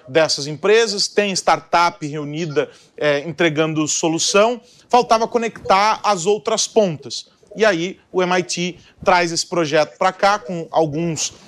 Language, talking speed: Portuguese, 125 wpm